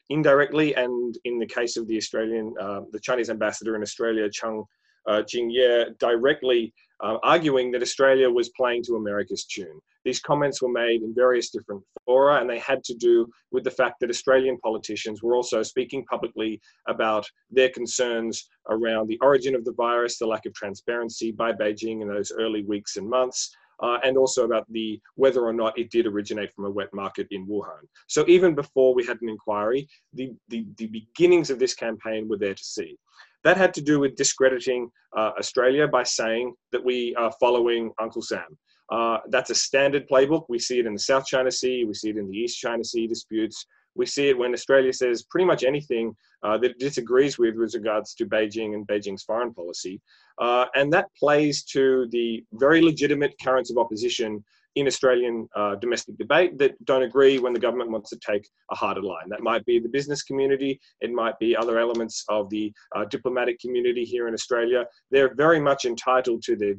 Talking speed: 195 wpm